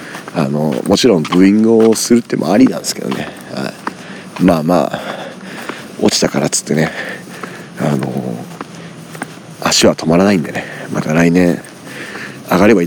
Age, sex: 40-59, male